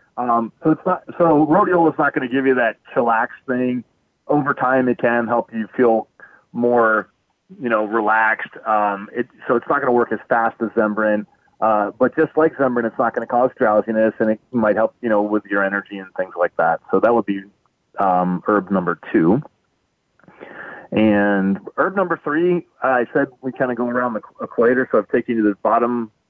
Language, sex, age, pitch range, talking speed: English, male, 30-49, 105-130 Hz, 210 wpm